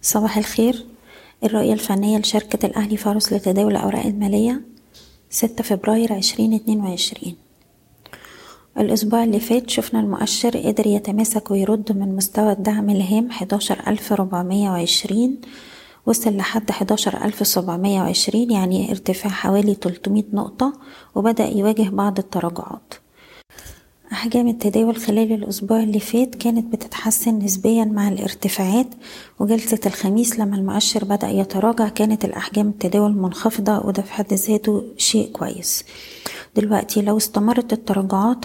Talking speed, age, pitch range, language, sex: 110 wpm, 20-39, 205-225 Hz, Arabic, female